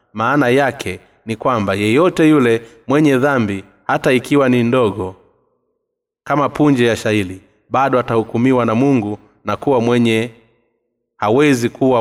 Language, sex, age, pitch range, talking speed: Swahili, male, 30-49, 105-135 Hz, 125 wpm